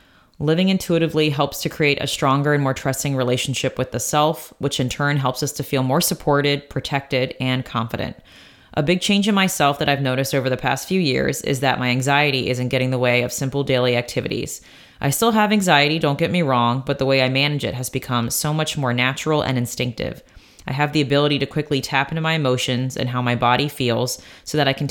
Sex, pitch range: female, 125-150 Hz